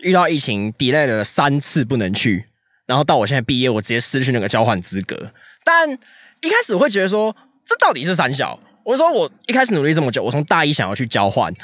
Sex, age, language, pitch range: male, 20-39, Chinese, 105-160 Hz